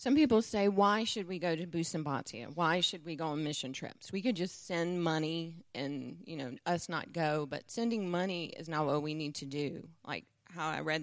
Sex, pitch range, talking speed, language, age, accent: female, 155-180 Hz, 225 wpm, English, 30-49, American